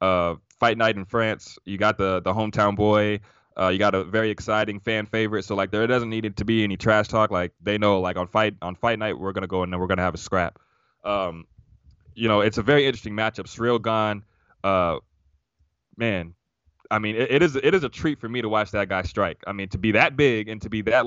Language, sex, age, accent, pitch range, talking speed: English, male, 20-39, American, 95-115 Hz, 240 wpm